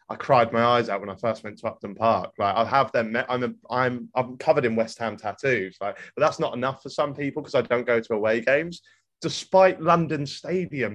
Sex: male